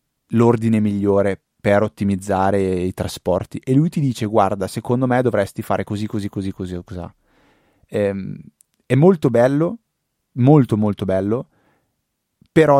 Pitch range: 105-130 Hz